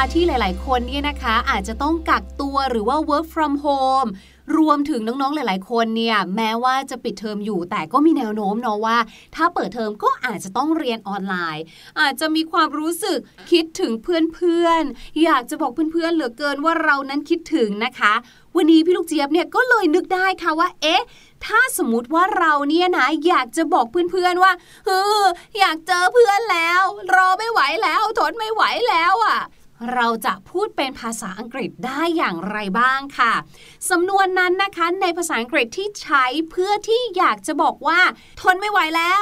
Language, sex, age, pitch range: Thai, female, 20-39, 250-360 Hz